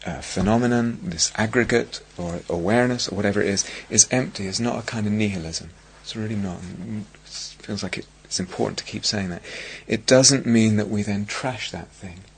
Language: English